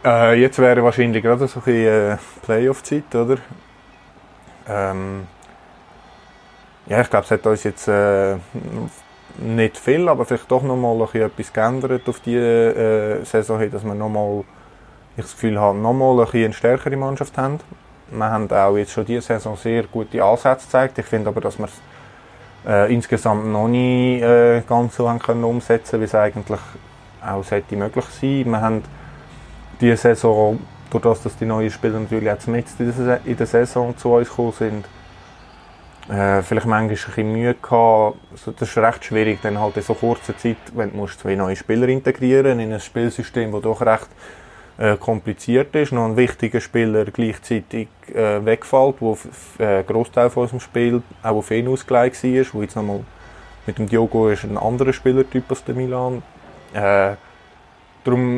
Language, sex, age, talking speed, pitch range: German, male, 20-39, 160 wpm, 105-125 Hz